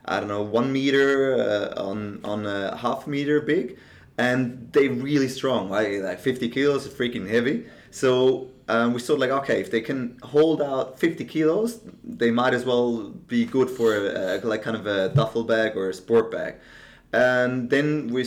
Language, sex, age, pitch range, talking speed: English, male, 20-39, 115-145 Hz, 175 wpm